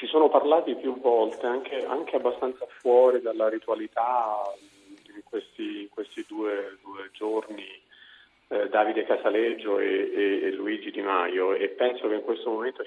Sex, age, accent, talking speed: male, 40-59, native, 150 wpm